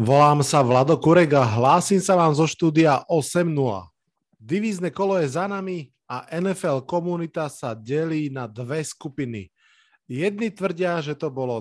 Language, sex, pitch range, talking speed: Slovak, male, 130-170 Hz, 145 wpm